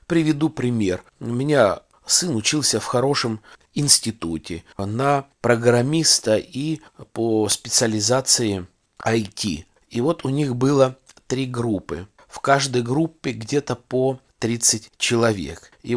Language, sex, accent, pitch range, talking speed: Russian, male, native, 110-140 Hz, 115 wpm